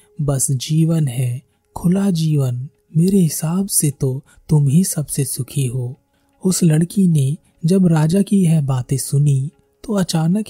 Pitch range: 135-175 Hz